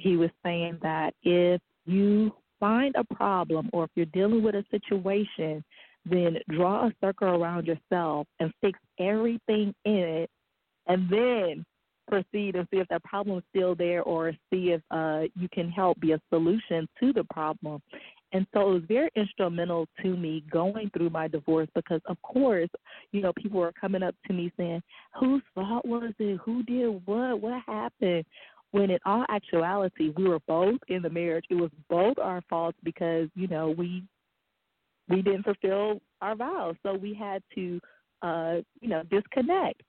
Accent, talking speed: American, 175 wpm